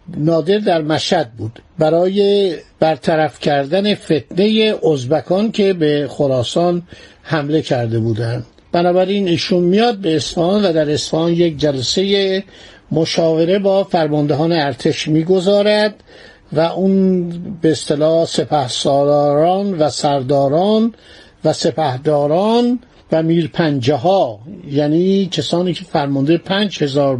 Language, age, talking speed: Persian, 50-69, 105 wpm